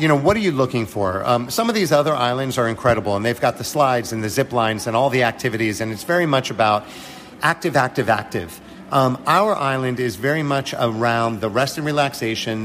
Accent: American